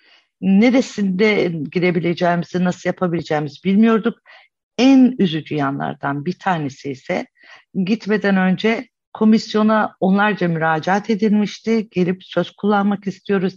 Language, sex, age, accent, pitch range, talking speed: Turkish, female, 50-69, native, 170-235 Hz, 95 wpm